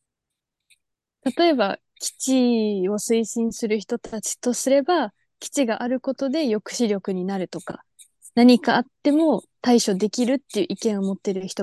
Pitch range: 200-275 Hz